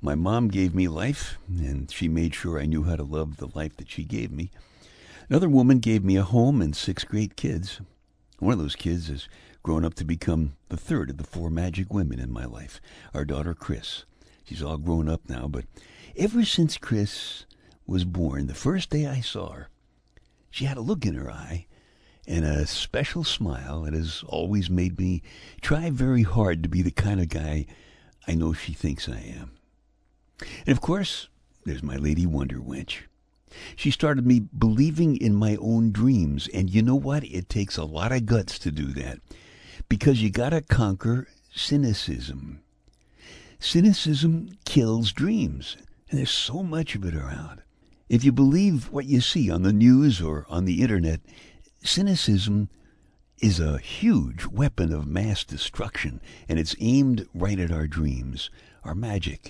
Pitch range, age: 80-120 Hz, 60-79